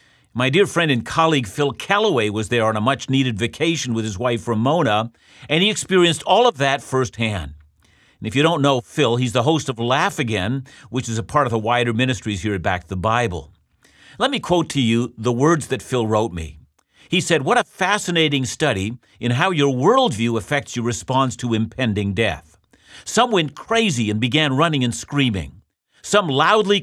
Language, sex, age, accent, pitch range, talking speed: English, male, 50-69, American, 110-155 Hz, 195 wpm